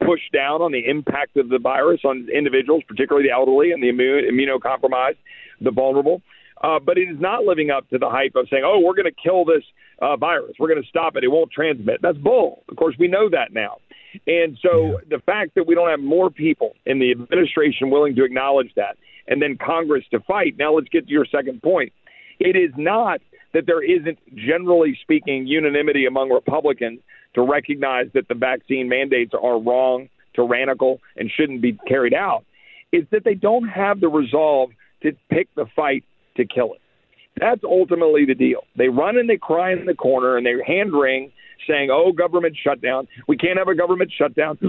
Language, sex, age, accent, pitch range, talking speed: English, male, 50-69, American, 130-185 Hz, 200 wpm